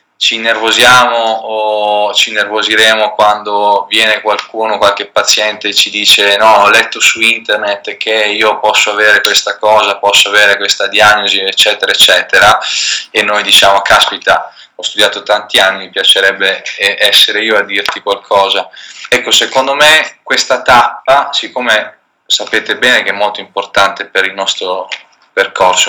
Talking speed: 140 wpm